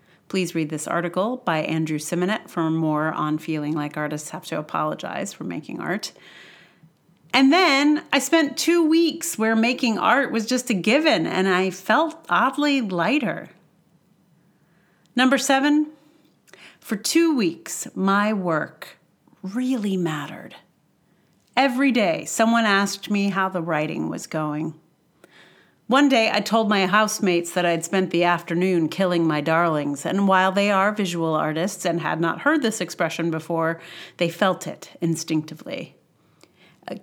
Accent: American